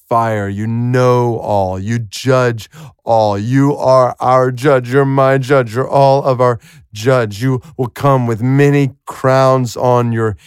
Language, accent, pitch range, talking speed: English, American, 115-150 Hz, 155 wpm